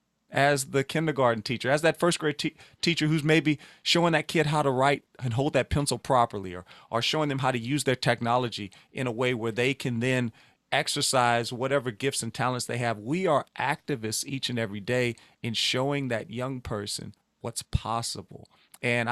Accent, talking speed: American, 190 wpm